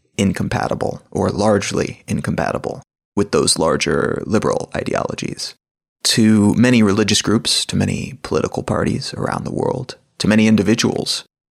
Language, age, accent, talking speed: English, 30-49, American, 120 wpm